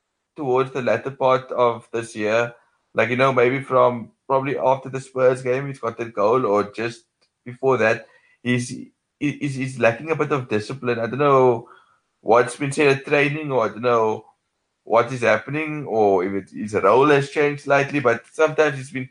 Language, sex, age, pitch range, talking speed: English, male, 20-39, 115-135 Hz, 190 wpm